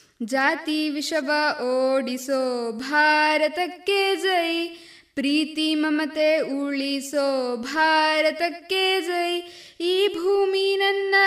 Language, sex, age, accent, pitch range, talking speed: Kannada, female, 20-39, native, 300-370 Hz, 70 wpm